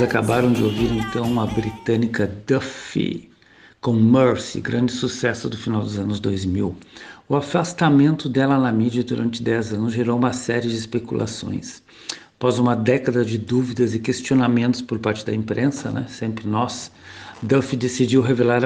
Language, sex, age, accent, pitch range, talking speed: Portuguese, male, 60-79, Brazilian, 110-125 Hz, 150 wpm